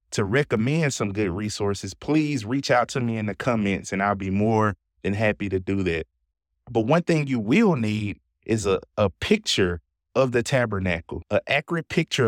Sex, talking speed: male, 185 wpm